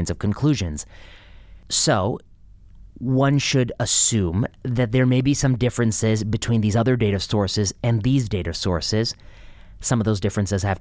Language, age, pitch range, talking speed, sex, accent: English, 30-49, 90-125 Hz, 145 wpm, male, American